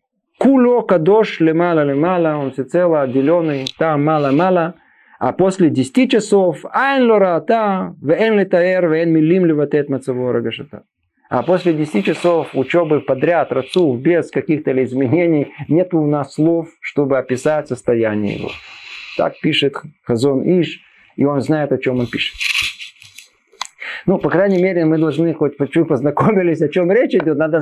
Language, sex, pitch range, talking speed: Russian, male, 145-210 Hz, 125 wpm